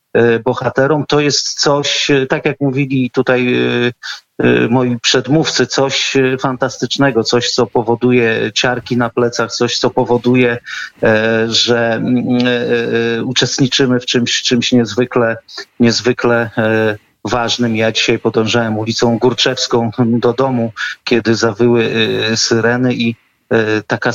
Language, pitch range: Polish, 115-130 Hz